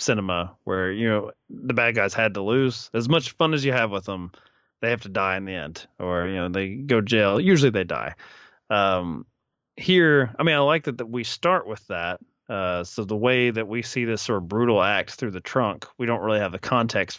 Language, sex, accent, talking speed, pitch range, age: English, male, American, 235 wpm, 100-130 Hz, 20-39